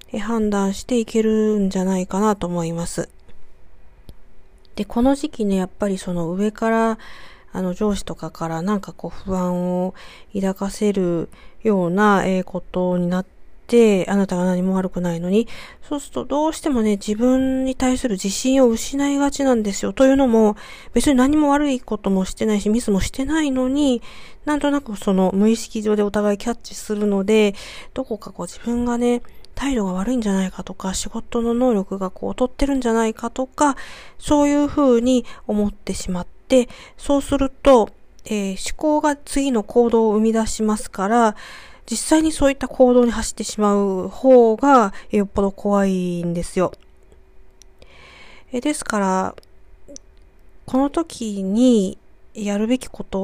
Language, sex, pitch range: Japanese, female, 190-255 Hz